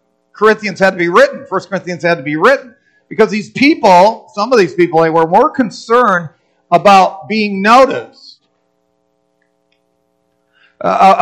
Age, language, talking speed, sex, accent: 50-69, English, 140 wpm, male, American